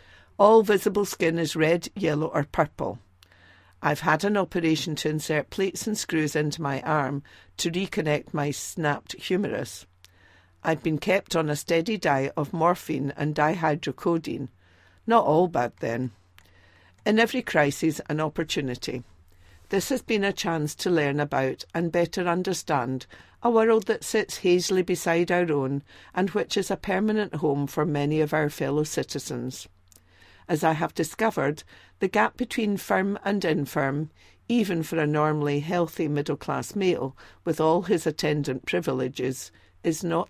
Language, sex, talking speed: English, female, 150 wpm